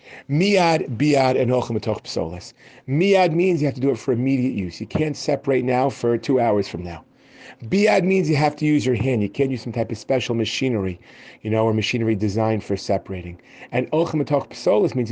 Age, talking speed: 40-59, 200 wpm